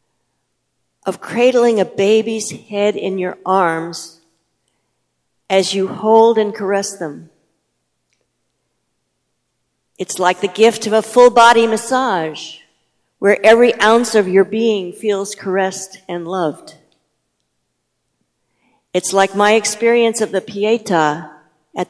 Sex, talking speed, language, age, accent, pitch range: female, 110 wpm, English, 50-69, American, 165-215 Hz